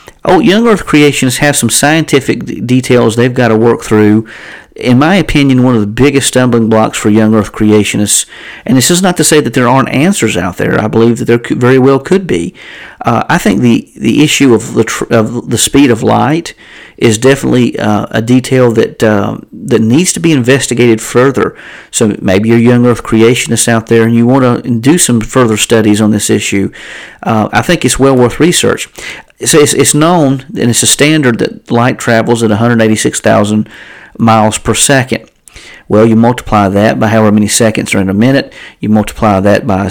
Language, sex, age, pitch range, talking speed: English, male, 40-59, 105-130 Hz, 195 wpm